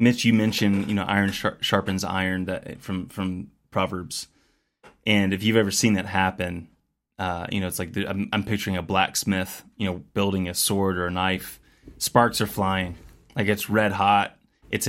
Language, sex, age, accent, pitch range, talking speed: English, male, 20-39, American, 95-110 Hz, 175 wpm